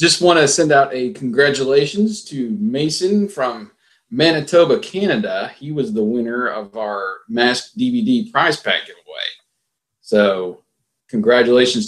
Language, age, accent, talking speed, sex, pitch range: English, 40-59, American, 125 wpm, male, 100-170 Hz